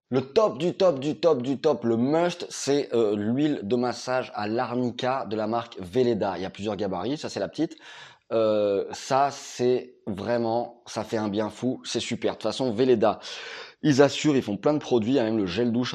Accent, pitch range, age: French, 100-130 Hz, 20-39